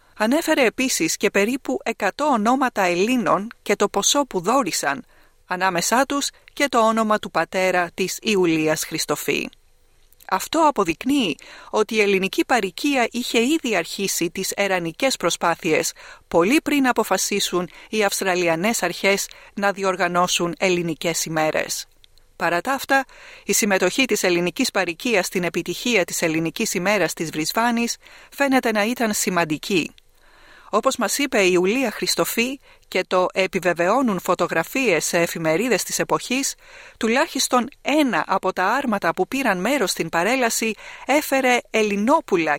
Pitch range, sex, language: 175-245 Hz, female, Greek